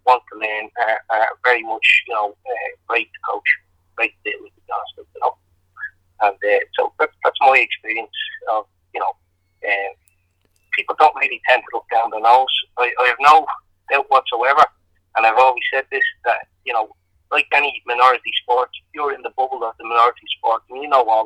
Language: English